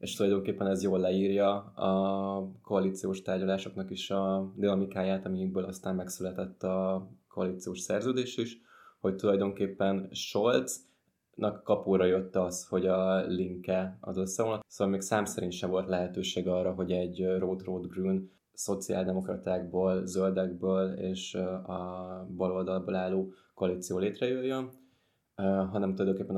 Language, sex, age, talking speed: Hungarian, male, 20-39, 115 wpm